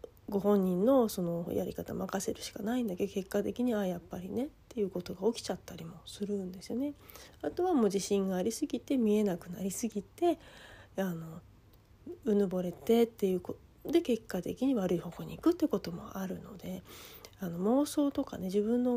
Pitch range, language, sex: 190-255 Hz, Japanese, female